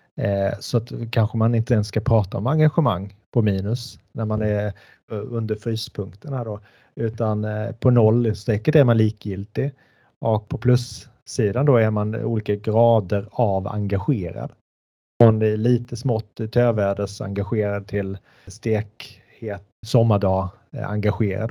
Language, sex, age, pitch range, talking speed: Swedish, male, 30-49, 100-120 Hz, 140 wpm